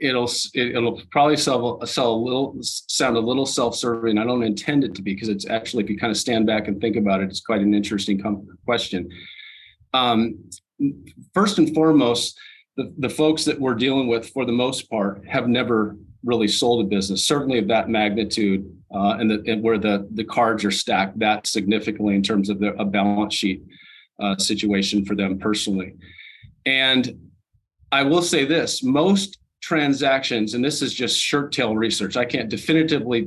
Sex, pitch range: male, 105-125 Hz